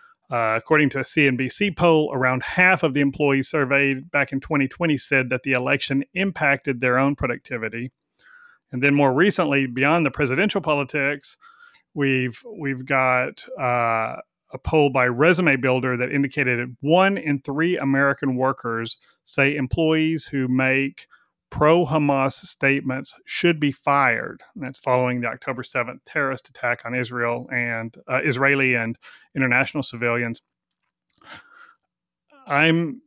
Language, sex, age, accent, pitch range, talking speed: English, male, 30-49, American, 130-155 Hz, 130 wpm